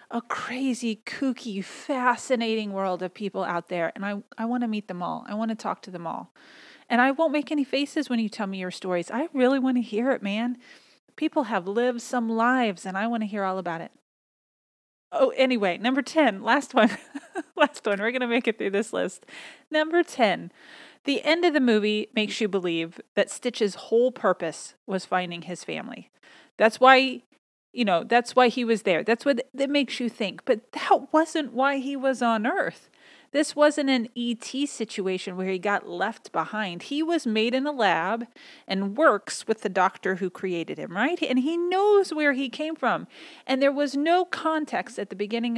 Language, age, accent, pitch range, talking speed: English, 30-49, American, 210-280 Hz, 200 wpm